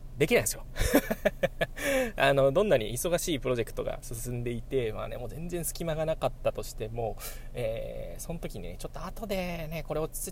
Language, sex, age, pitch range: Japanese, male, 20-39, 110-165 Hz